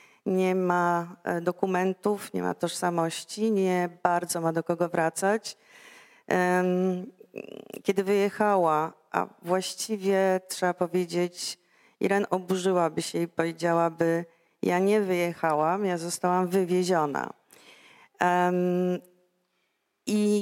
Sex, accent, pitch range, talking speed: female, native, 170-205 Hz, 90 wpm